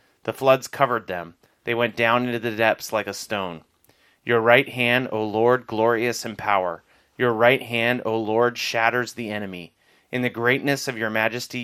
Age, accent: 30-49, American